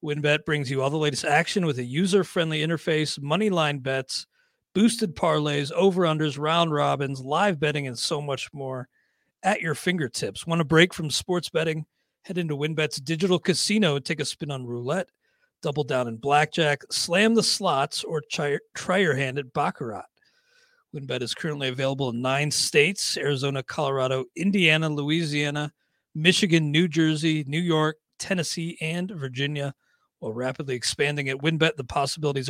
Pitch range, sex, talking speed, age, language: 145-175 Hz, male, 155 wpm, 40-59, English